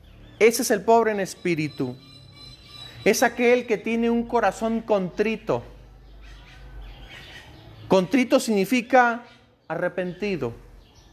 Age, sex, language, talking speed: 40-59, male, Spanish, 85 wpm